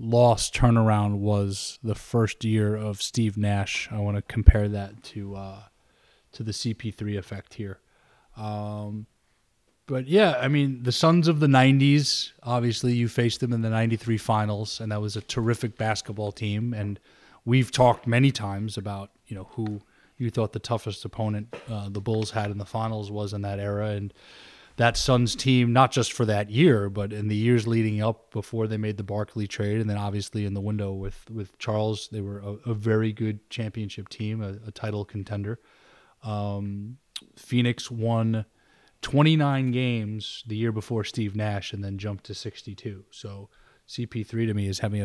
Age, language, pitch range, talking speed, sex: 20-39, English, 105-120 Hz, 180 wpm, male